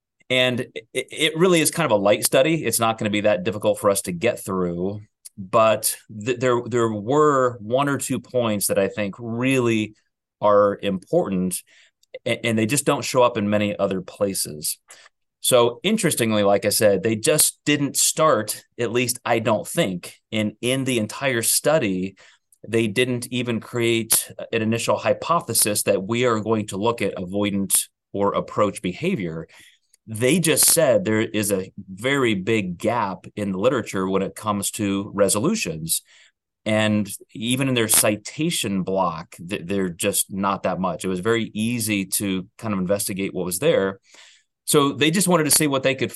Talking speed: 170 wpm